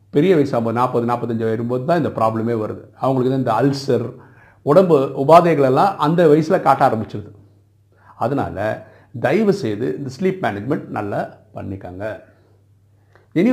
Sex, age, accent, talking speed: male, 50-69, native, 115 wpm